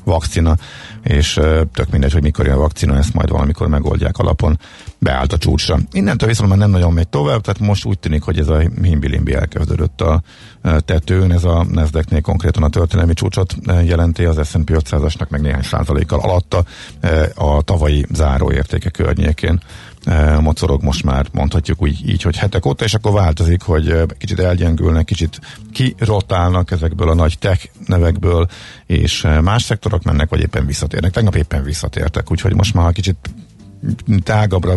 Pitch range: 80-100 Hz